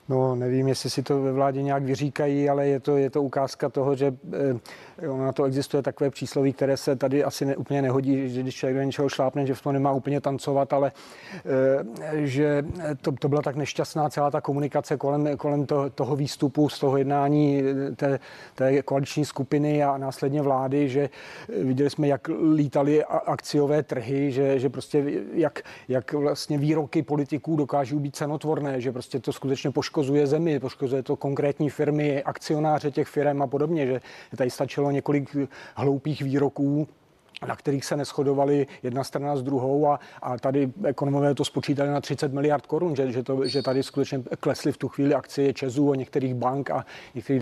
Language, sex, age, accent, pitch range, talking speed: Czech, male, 40-59, native, 135-145 Hz, 175 wpm